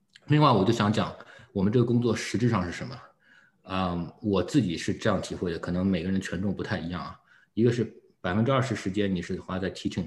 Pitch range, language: 90-110 Hz, Chinese